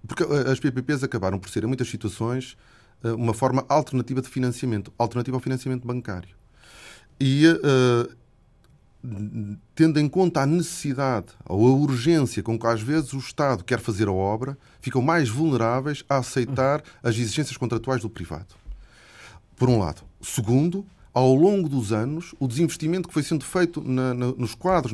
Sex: male